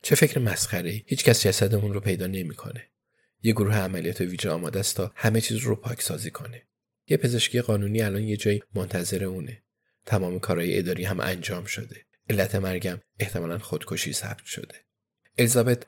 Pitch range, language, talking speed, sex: 95-115 Hz, Persian, 165 wpm, male